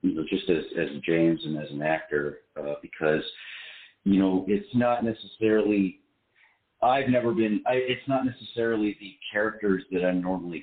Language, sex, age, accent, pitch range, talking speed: English, male, 40-59, American, 85-110 Hz, 160 wpm